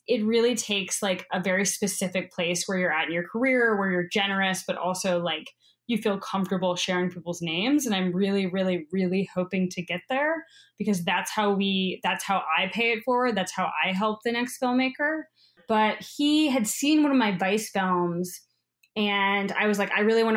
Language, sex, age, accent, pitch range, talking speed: English, female, 20-39, American, 180-225 Hz, 200 wpm